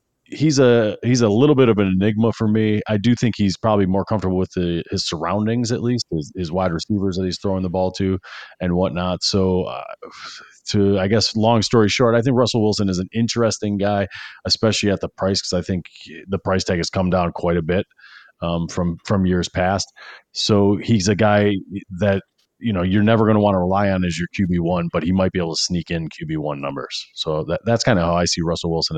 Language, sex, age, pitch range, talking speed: English, male, 30-49, 85-105 Hz, 235 wpm